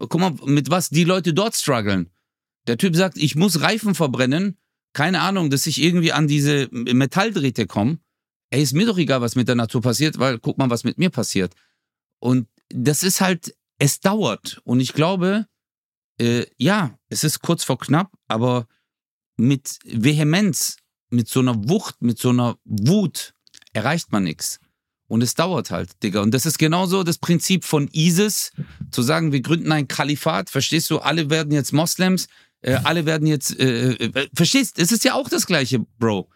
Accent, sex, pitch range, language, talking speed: German, male, 125-180 Hz, German, 185 wpm